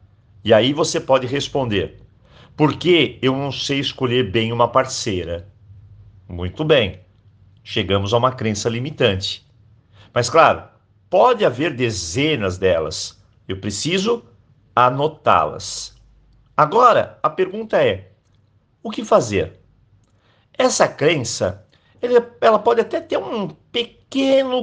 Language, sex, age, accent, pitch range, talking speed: Portuguese, male, 50-69, Brazilian, 105-150 Hz, 105 wpm